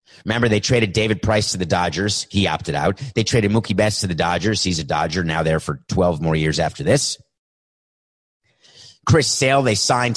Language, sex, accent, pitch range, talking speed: English, male, American, 100-135 Hz, 195 wpm